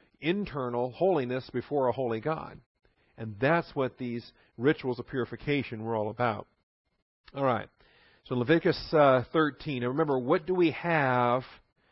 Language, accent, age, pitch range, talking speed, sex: English, American, 50-69, 120-150 Hz, 140 wpm, male